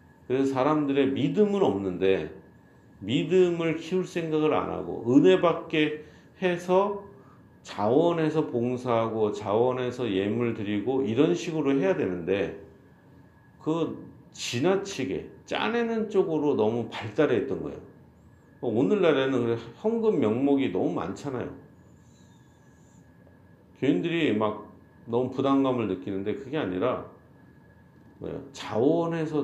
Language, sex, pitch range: Korean, male, 115-155 Hz